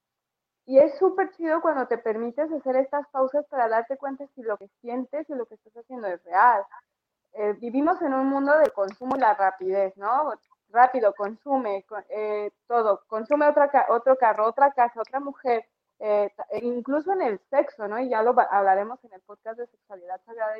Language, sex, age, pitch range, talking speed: Spanish, female, 20-39, 220-285 Hz, 185 wpm